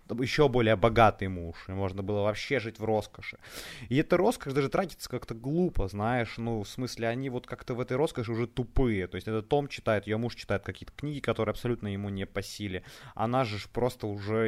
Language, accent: Ukrainian, native